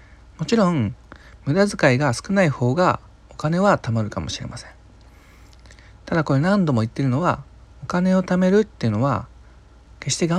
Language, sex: Japanese, male